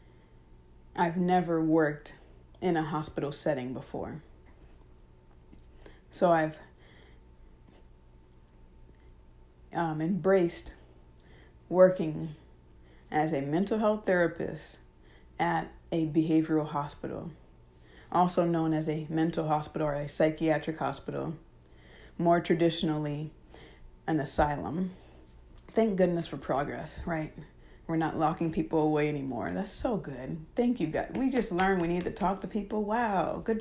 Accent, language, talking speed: American, English, 115 wpm